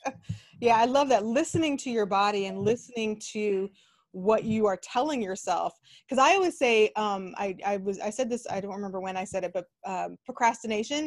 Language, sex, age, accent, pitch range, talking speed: English, female, 20-39, American, 195-245 Hz, 200 wpm